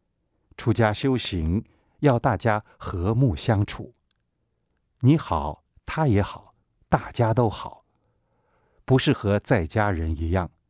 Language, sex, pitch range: Chinese, male, 80-115 Hz